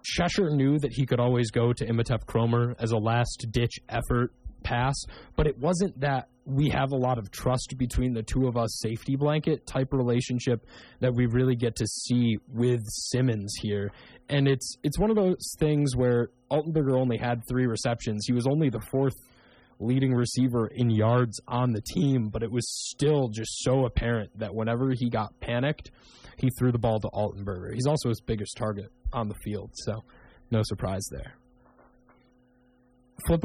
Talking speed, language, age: 180 wpm, English, 20-39